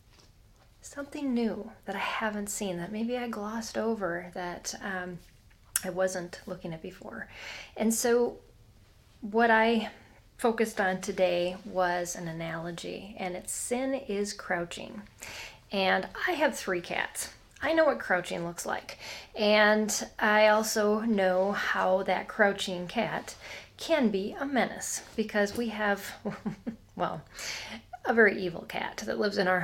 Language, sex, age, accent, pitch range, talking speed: English, female, 30-49, American, 185-235 Hz, 135 wpm